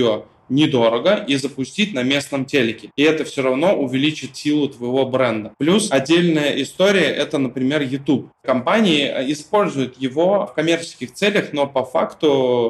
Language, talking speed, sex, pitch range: Russian, 135 wpm, male, 125-160 Hz